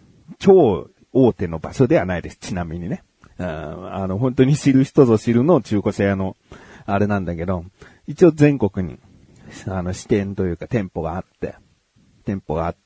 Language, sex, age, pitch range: Japanese, male, 40-59, 100-160 Hz